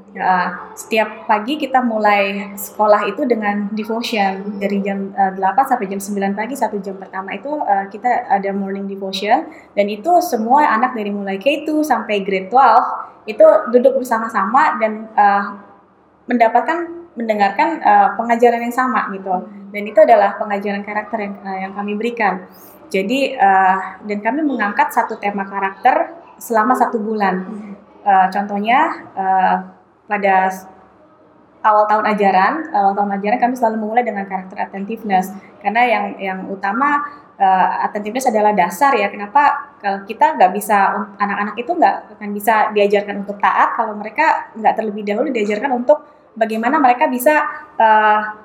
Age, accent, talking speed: 20-39, native, 150 wpm